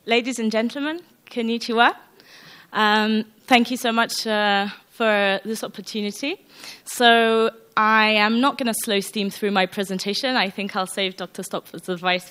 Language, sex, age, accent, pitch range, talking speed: English, female, 20-39, British, 195-235 Hz, 150 wpm